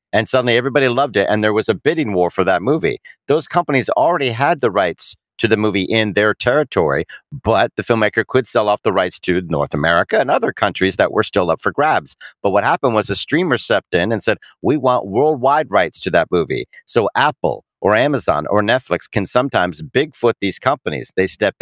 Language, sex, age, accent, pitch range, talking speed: English, male, 50-69, American, 95-125 Hz, 210 wpm